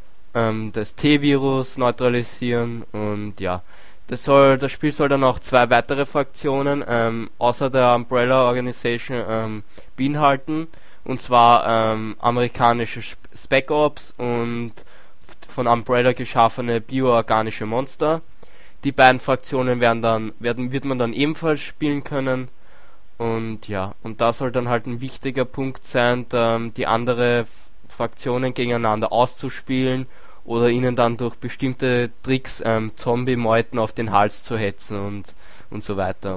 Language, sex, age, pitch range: German, male, 20-39, 110-130 Hz